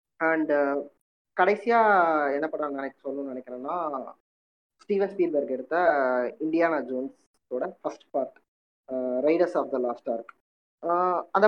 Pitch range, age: 140-190 Hz, 20-39